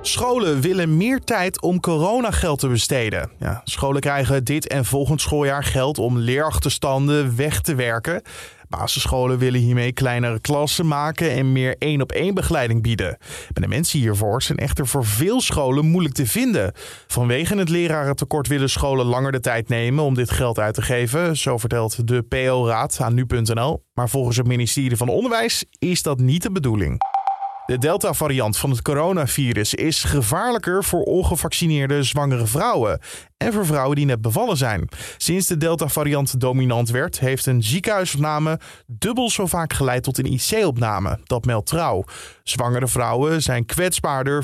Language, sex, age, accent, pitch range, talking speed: Dutch, male, 20-39, Dutch, 125-160 Hz, 155 wpm